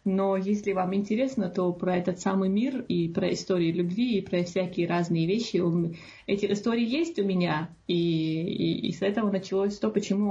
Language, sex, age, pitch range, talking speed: Russian, female, 30-49, 175-210 Hz, 185 wpm